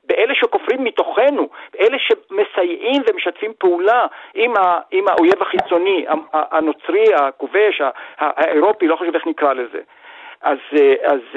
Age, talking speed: 50-69, 100 wpm